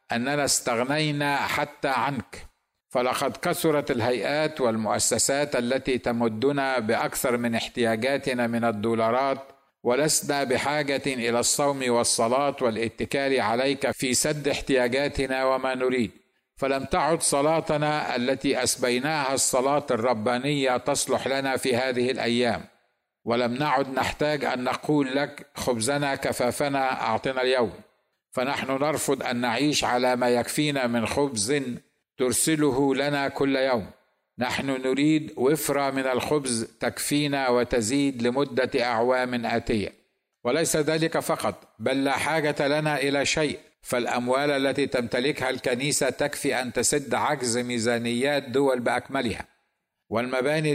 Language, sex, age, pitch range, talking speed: Arabic, male, 50-69, 125-145 Hz, 110 wpm